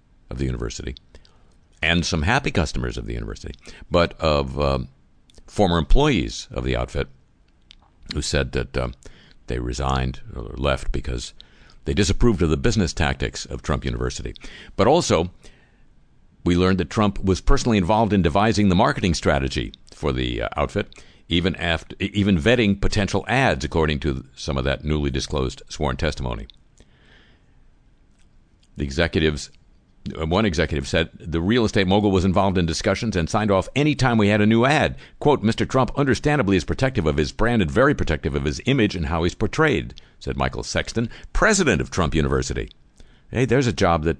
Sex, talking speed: male, 165 wpm